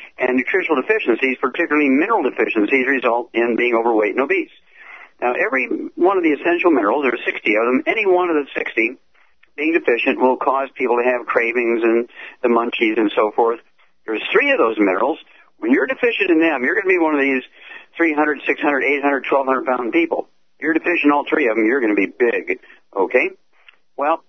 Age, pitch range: 60-79, 125-175 Hz